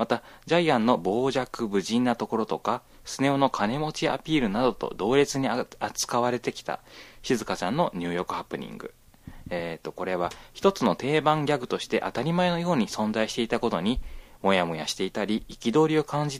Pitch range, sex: 105-145 Hz, male